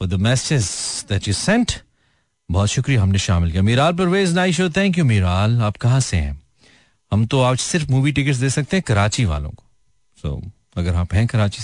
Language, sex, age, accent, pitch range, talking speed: Hindi, male, 40-59, native, 95-120 Hz, 175 wpm